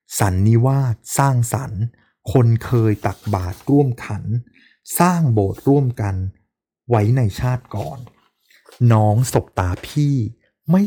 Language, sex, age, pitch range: Thai, male, 20-39, 105-130 Hz